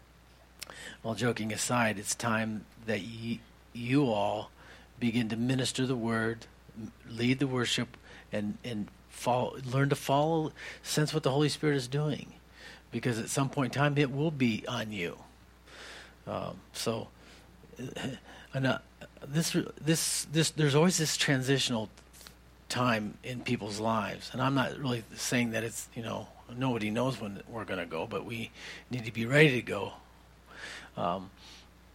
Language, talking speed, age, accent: English, 155 wpm, 50-69, American